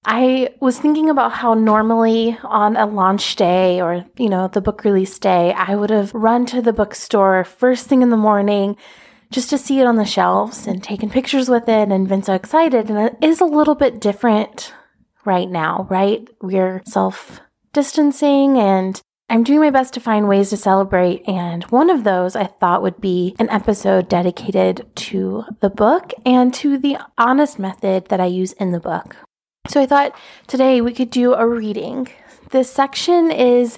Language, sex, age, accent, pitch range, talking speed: English, female, 20-39, American, 195-255 Hz, 185 wpm